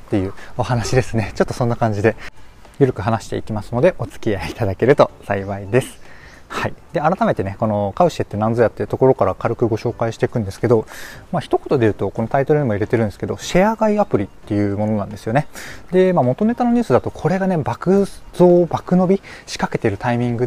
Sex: male